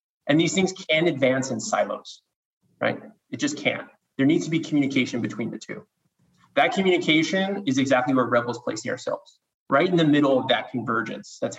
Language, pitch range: English, 130-170 Hz